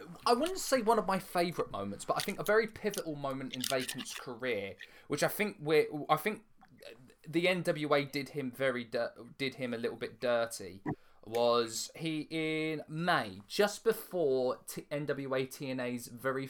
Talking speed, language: 165 wpm, English